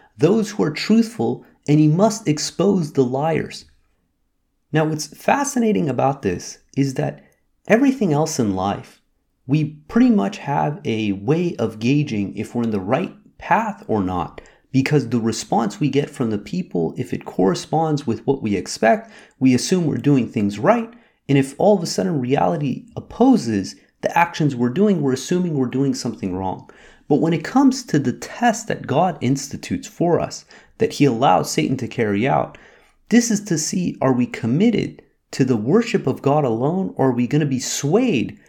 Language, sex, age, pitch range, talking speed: English, male, 30-49, 125-200 Hz, 180 wpm